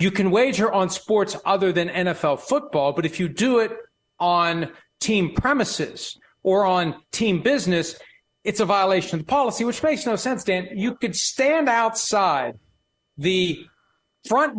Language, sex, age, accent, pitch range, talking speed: English, male, 40-59, American, 180-265 Hz, 155 wpm